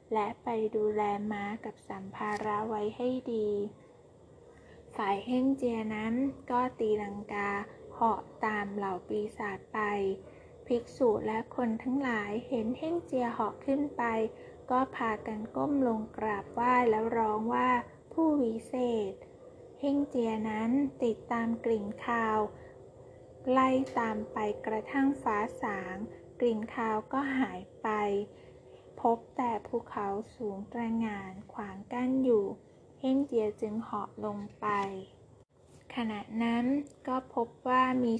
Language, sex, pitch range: Thai, female, 215-250 Hz